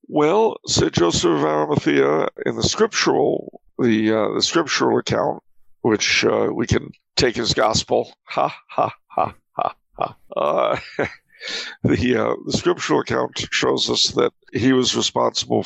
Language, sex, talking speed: English, male, 140 wpm